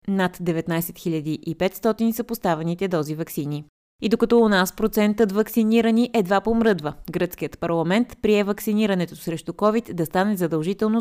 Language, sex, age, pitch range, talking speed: Bulgarian, female, 20-39, 170-210 Hz, 130 wpm